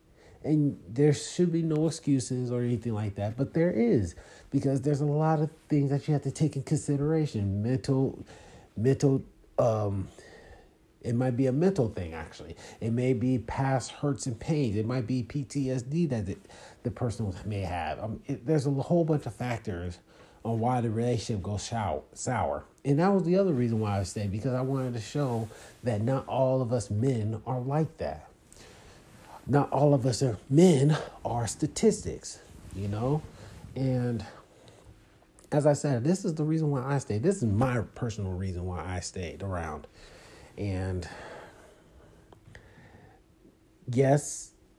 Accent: American